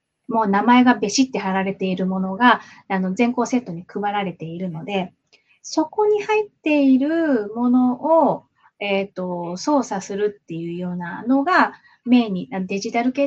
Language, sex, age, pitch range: Japanese, female, 20-39, 190-260 Hz